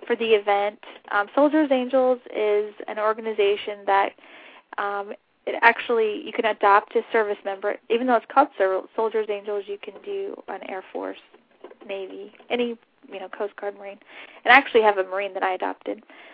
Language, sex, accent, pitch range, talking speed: English, female, American, 210-255 Hz, 175 wpm